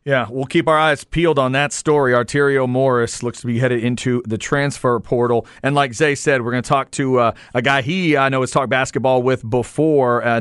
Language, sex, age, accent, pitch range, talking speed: English, male, 40-59, American, 125-180 Hz, 235 wpm